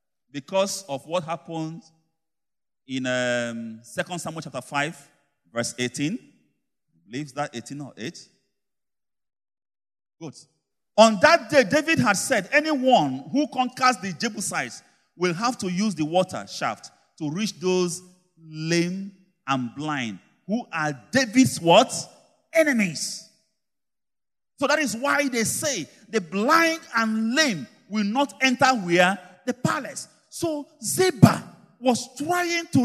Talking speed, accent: 125 wpm, Nigerian